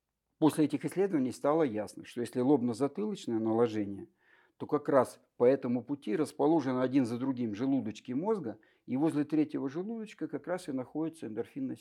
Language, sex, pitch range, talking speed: Russian, male, 120-165 Hz, 150 wpm